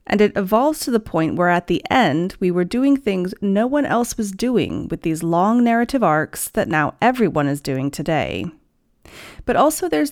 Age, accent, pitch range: 30-49, American, 170-245 Hz